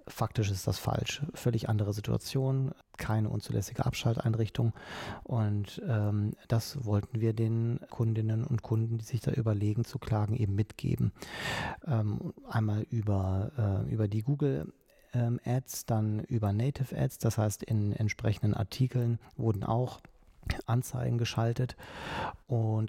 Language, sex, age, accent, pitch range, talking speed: German, male, 40-59, German, 110-125 Hz, 130 wpm